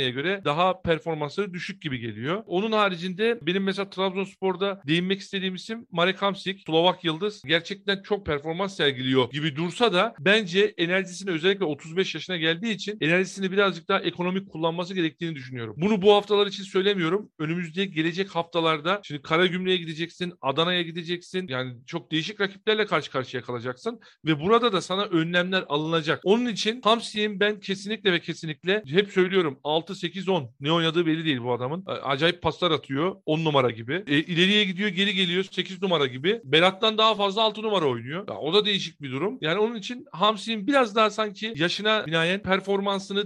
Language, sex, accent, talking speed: Turkish, male, native, 165 wpm